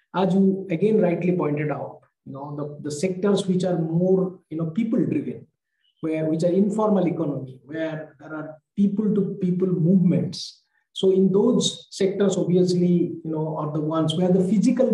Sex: male